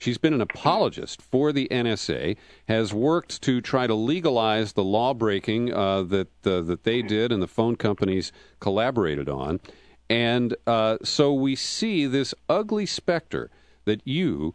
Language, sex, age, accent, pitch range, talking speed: English, male, 50-69, American, 110-140 Hz, 155 wpm